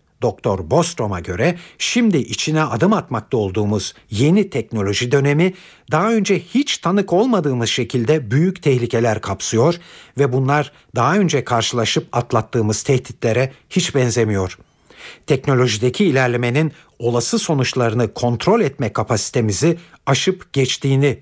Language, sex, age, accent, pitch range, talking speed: Turkish, male, 60-79, native, 115-155 Hz, 105 wpm